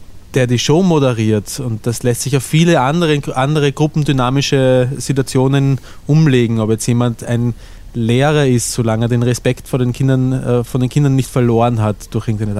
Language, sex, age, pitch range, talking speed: German, male, 20-39, 120-150 Hz, 175 wpm